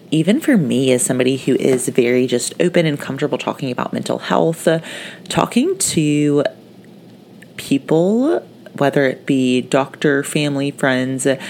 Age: 30-49